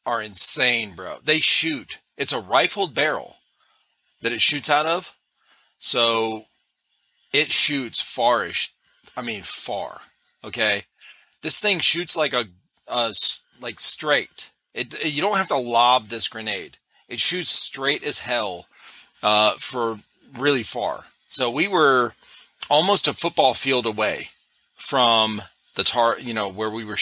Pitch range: 115-145 Hz